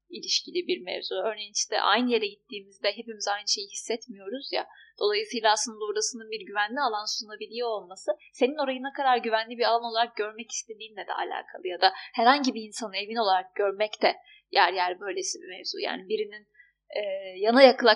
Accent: native